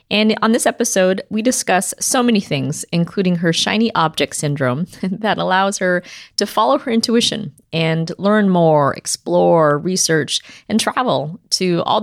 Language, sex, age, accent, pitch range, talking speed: English, female, 30-49, American, 160-205 Hz, 150 wpm